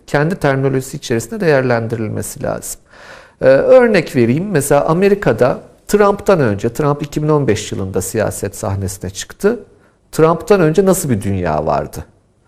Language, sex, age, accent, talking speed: Turkish, male, 50-69, native, 115 wpm